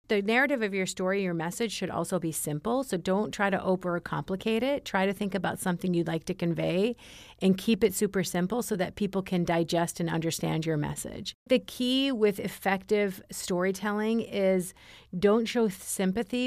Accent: American